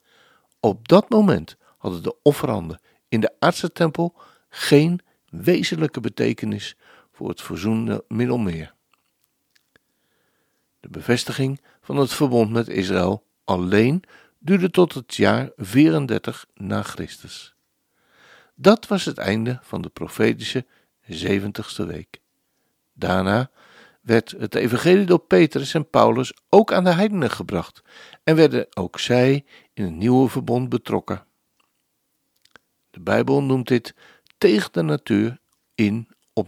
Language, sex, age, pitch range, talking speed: Dutch, male, 60-79, 100-150 Hz, 120 wpm